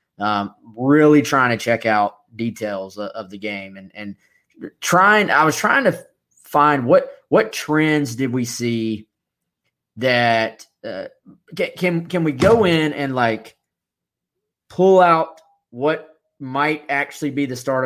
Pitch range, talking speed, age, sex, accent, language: 115-145 Hz, 140 wpm, 20-39, male, American, English